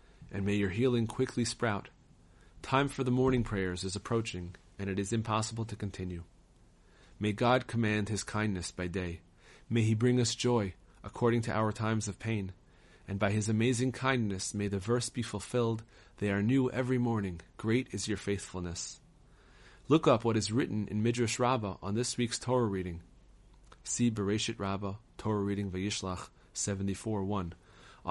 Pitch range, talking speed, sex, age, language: 100-120 Hz, 160 wpm, male, 30-49, English